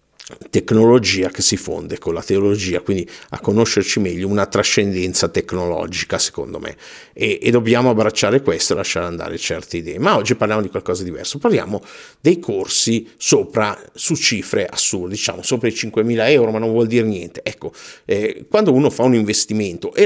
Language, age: Italian, 50-69